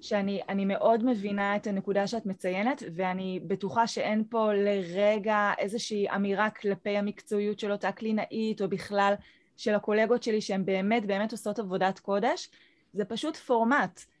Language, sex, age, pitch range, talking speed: Hebrew, female, 20-39, 195-230 Hz, 140 wpm